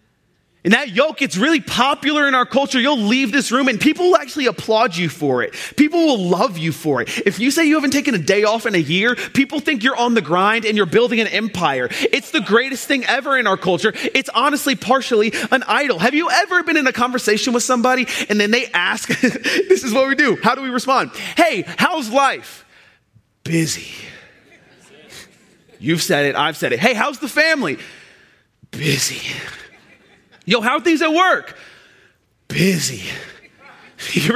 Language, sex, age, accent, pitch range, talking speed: English, male, 30-49, American, 215-290 Hz, 190 wpm